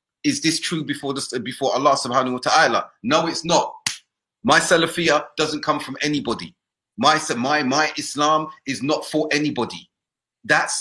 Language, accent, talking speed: English, British, 155 wpm